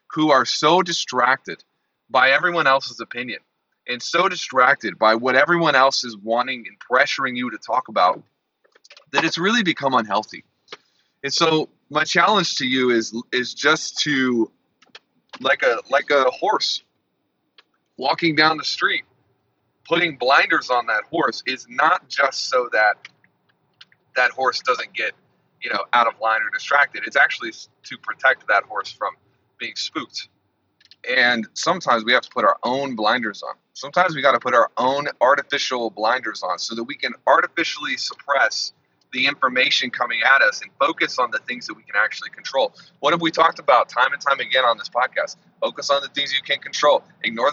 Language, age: English, 30-49